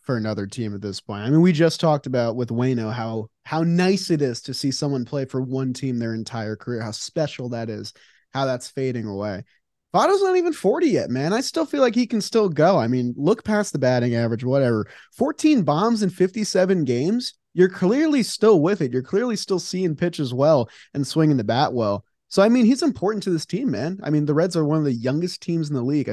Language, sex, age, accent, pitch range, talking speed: English, male, 20-39, American, 130-180 Hz, 235 wpm